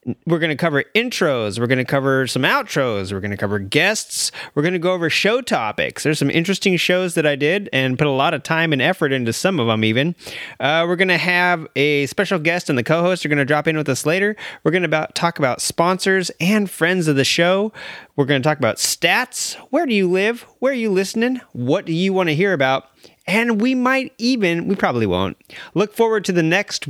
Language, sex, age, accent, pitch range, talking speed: English, male, 30-49, American, 140-185 Hz, 235 wpm